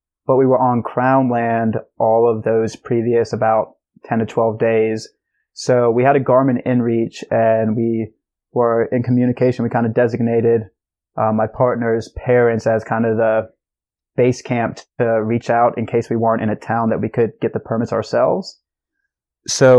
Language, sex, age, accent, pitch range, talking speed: English, male, 20-39, American, 115-125 Hz, 175 wpm